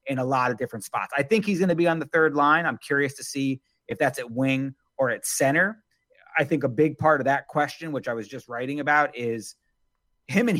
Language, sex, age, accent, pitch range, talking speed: English, male, 30-49, American, 125-155 Hz, 250 wpm